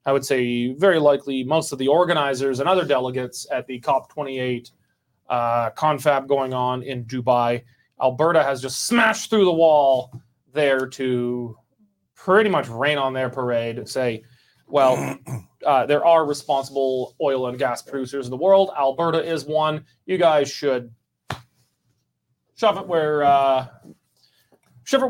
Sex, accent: male, American